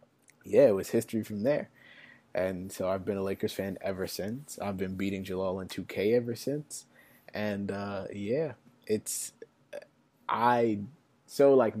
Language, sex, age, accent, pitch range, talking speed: English, male, 20-39, American, 100-115 Hz, 155 wpm